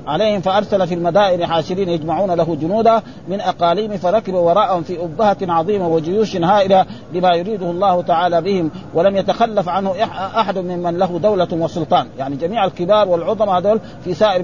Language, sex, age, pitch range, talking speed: Arabic, male, 50-69, 170-205 Hz, 160 wpm